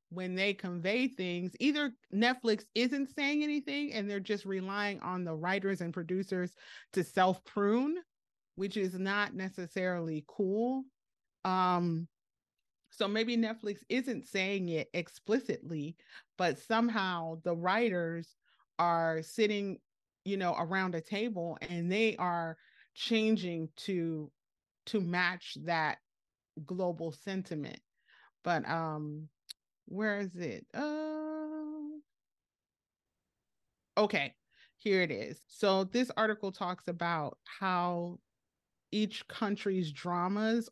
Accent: American